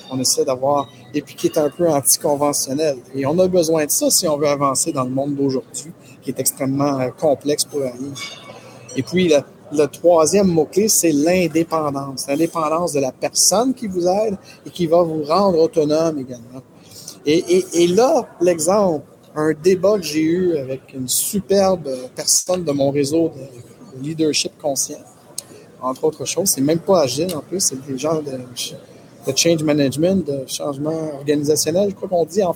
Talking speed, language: 180 wpm, English